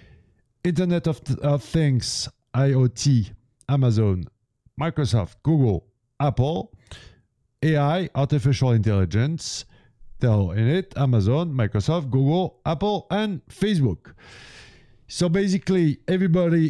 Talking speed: 90 wpm